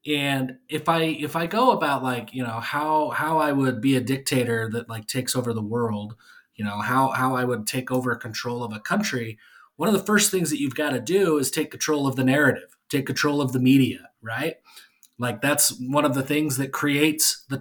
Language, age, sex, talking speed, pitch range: English, 30-49, male, 225 wpm, 130-170 Hz